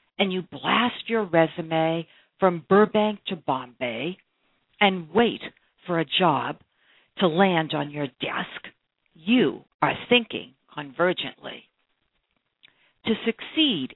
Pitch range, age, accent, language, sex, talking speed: 165-230 Hz, 60-79, American, English, female, 110 wpm